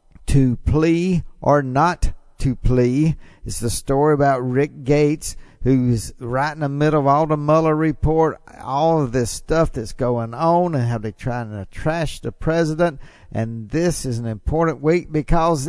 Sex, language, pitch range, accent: male, English, 125-165 Hz, American